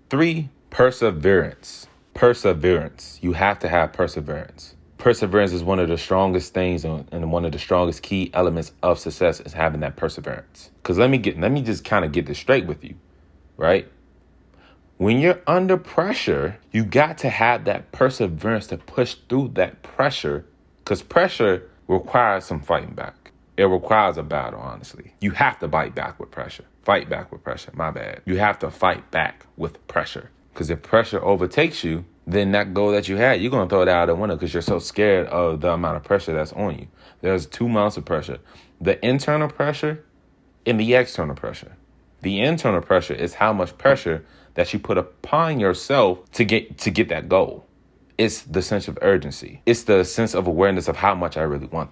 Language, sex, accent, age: English, male, American, 30-49